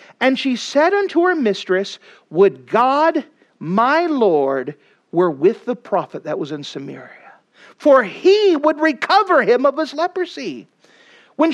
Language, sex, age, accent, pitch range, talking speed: English, male, 40-59, American, 210-355 Hz, 140 wpm